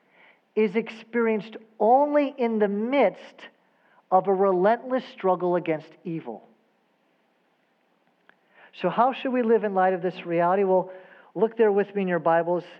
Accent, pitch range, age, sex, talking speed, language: American, 160-210 Hz, 50-69, male, 140 wpm, English